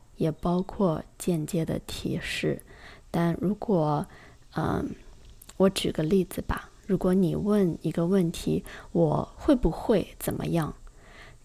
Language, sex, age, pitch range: Chinese, female, 20-39, 175-215 Hz